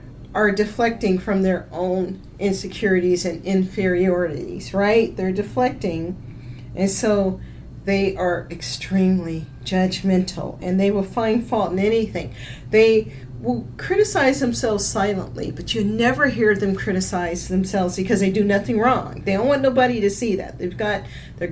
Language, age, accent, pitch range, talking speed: English, 40-59, American, 180-225 Hz, 140 wpm